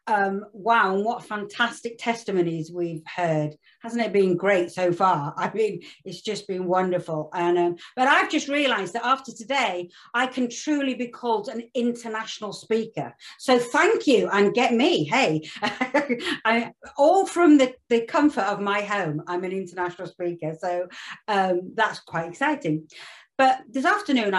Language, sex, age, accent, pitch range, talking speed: English, female, 40-59, British, 175-240 Hz, 160 wpm